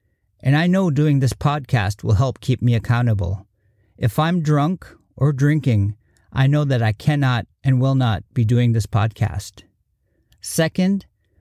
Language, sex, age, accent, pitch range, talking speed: English, male, 50-69, American, 105-145 Hz, 155 wpm